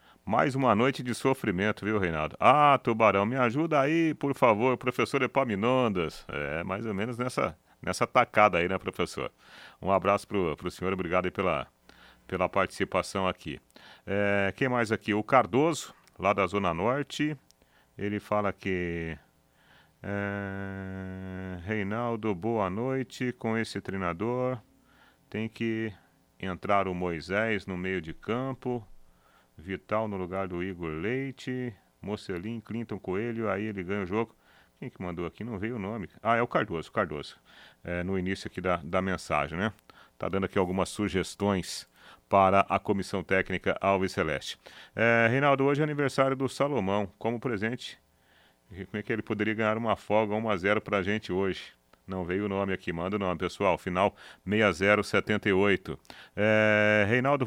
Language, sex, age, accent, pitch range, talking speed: Portuguese, male, 40-59, Brazilian, 95-115 Hz, 150 wpm